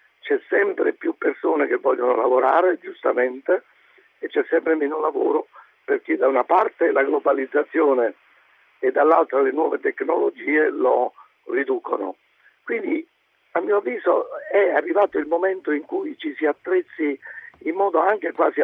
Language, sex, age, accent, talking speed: Italian, male, 50-69, native, 140 wpm